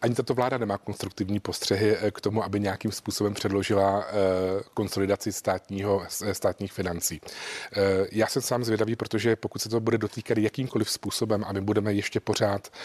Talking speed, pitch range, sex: 155 wpm, 100-105 Hz, male